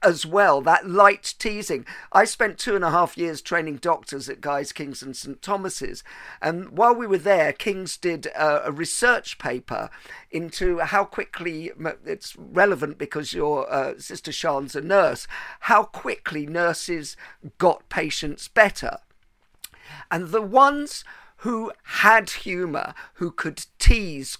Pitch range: 165-225 Hz